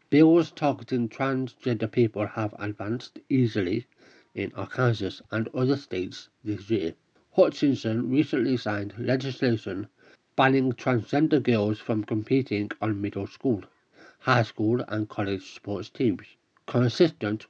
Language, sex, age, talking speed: English, male, 60-79, 115 wpm